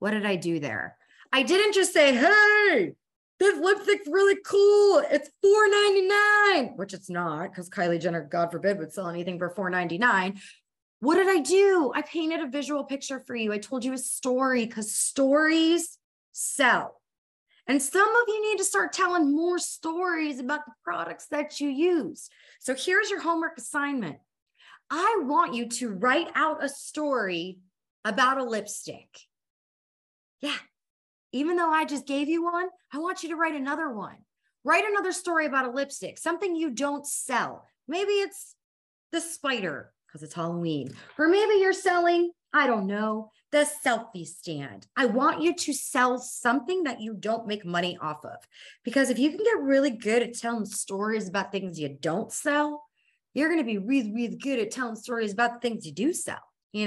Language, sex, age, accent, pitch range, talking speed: English, female, 20-39, American, 215-335 Hz, 175 wpm